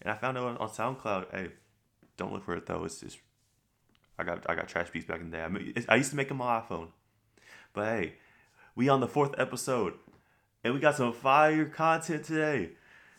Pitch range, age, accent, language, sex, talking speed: 90-125 Hz, 20-39, American, English, male, 225 wpm